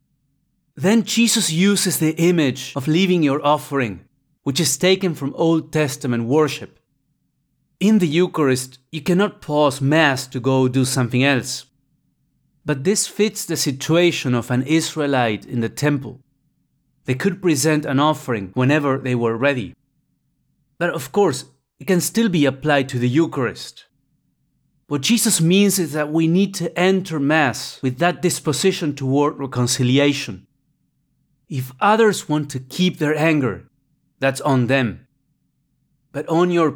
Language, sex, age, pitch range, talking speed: English, male, 30-49, 135-170 Hz, 140 wpm